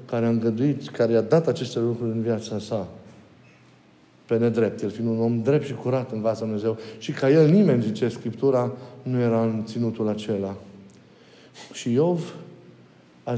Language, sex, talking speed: Romanian, male, 165 wpm